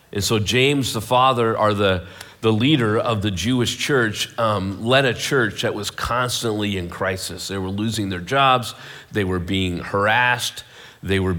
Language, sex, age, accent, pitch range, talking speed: English, male, 40-59, American, 95-125 Hz, 175 wpm